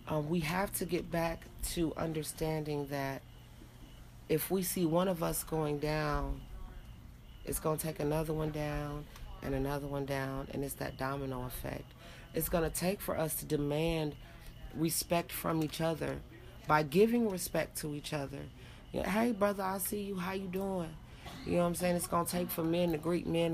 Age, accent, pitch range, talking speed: 30-49, American, 145-175 Hz, 185 wpm